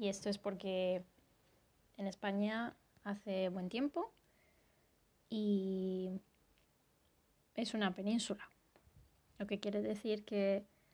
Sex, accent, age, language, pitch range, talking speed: female, Spanish, 20-39, Spanish, 195-215 Hz, 100 wpm